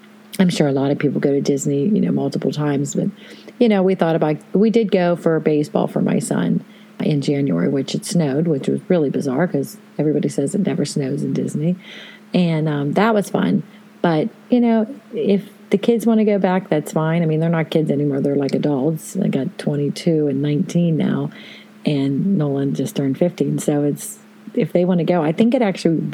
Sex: female